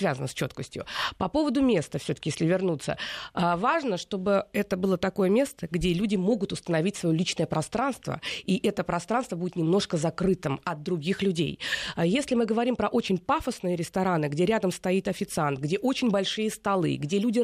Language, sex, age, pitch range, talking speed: Russian, female, 20-39, 175-235 Hz, 165 wpm